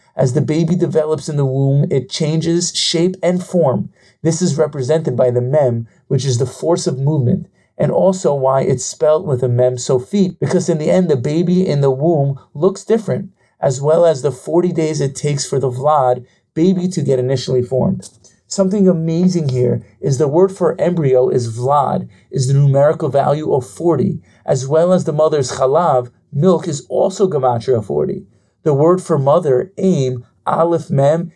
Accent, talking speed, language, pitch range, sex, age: American, 180 wpm, English, 135-175 Hz, male, 40-59